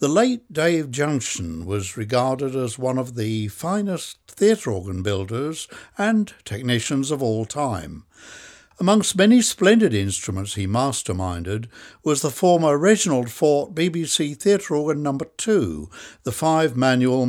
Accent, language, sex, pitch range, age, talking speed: British, English, male, 110-165 Hz, 60-79, 130 wpm